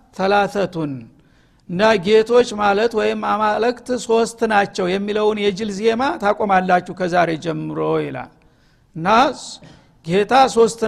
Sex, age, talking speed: male, 60-79, 95 wpm